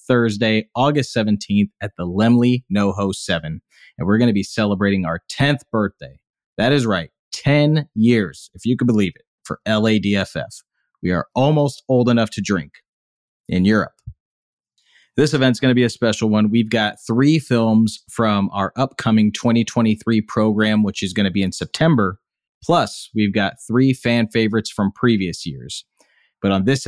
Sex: male